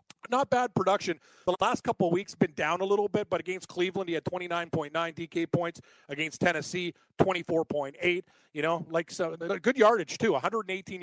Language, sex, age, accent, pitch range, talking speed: English, male, 40-59, American, 165-185 Hz, 170 wpm